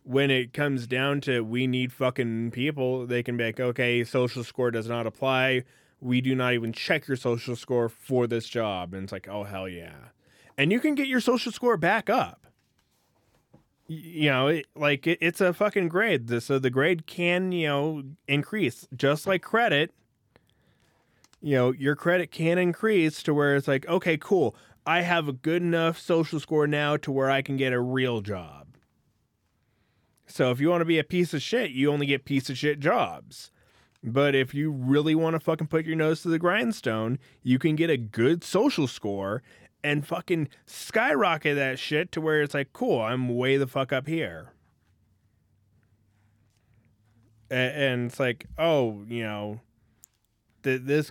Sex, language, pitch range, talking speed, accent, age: male, English, 120-160 Hz, 175 wpm, American, 20-39